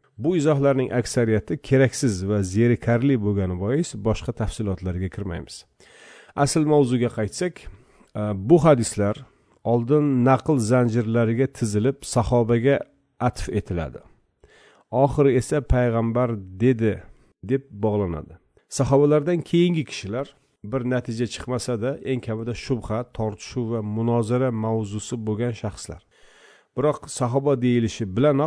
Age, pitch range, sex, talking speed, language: 40-59, 105-135 Hz, male, 100 wpm, Russian